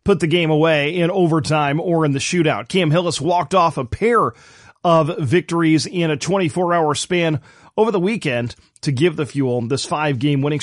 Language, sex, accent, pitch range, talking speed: English, male, American, 140-175 Hz, 190 wpm